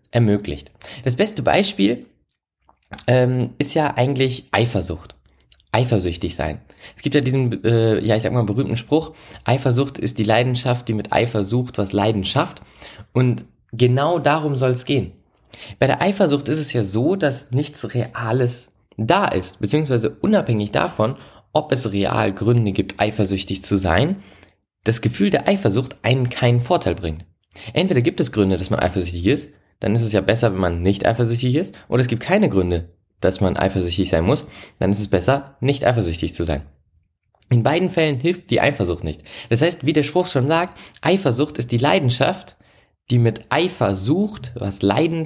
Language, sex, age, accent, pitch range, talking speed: German, male, 20-39, German, 100-145 Hz, 170 wpm